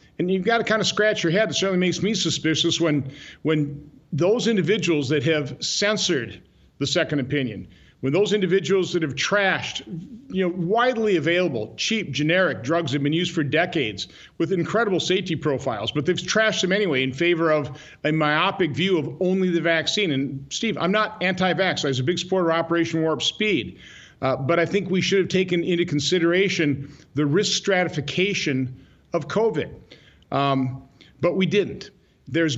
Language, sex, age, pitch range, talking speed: English, male, 50-69, 145-190 Hz, 180 wpm